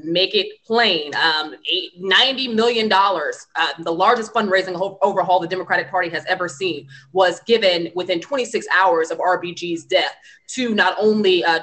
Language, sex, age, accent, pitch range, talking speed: English, female, 20-39, American, 165-195 Hz, 150 wpm